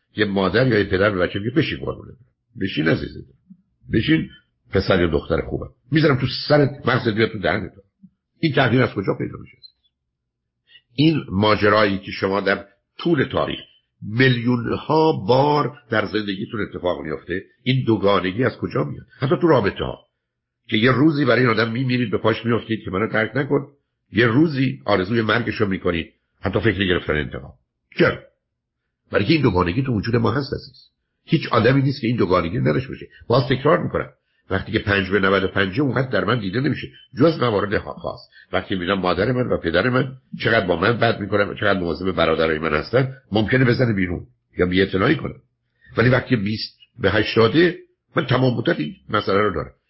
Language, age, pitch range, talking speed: Persian, 60-79, 100-130 Hz, 175 wpm